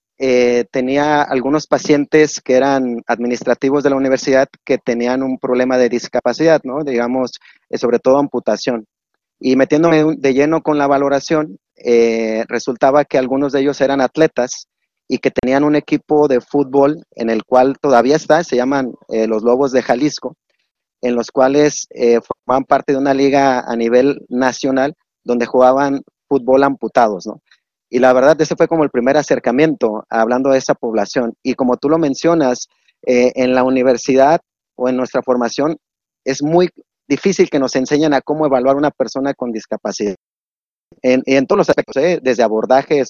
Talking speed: 165 wpm